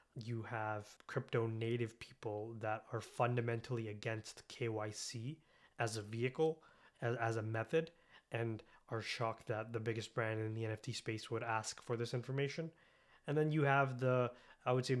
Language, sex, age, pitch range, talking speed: English, male, 20-39, 110-125 Hz, 165 wpm